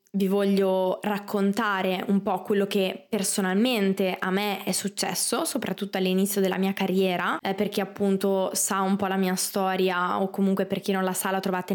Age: 20-39